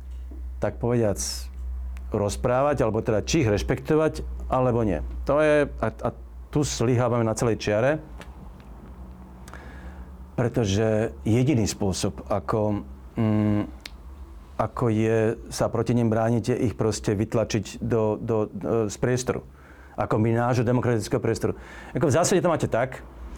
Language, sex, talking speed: Slovak, male, 125 wpm